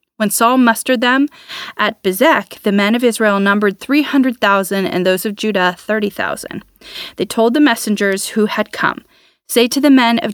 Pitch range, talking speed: 195-240 Hz, 170 wpm